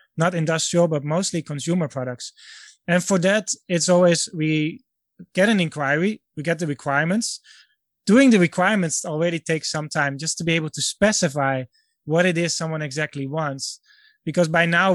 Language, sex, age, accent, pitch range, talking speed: English, male, 20-39, Dutch, 150-185 Hz, 165 wpm